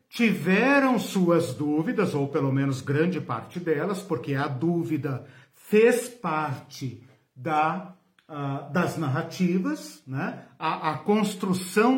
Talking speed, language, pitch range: 100 wpm, Portuguese, 155-230 Hz